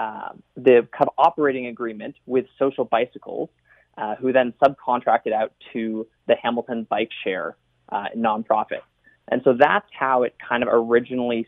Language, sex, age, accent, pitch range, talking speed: English, male, 20-39, American, 115-155 Hz, 150 wpm